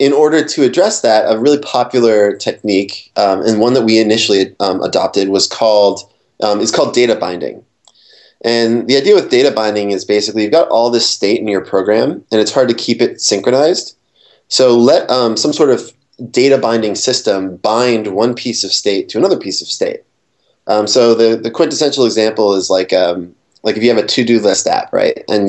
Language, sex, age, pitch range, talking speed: English, male, 20-39, 100-120 Hz, 195 wpm